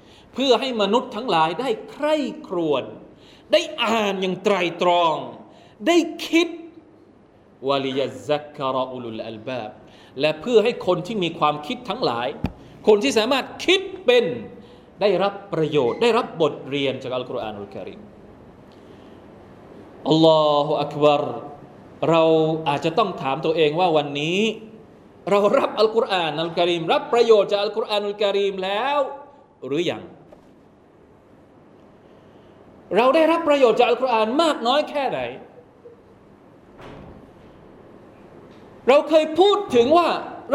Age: 20-39